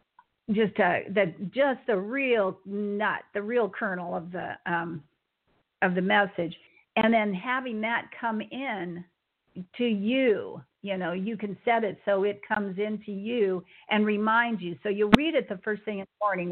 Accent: American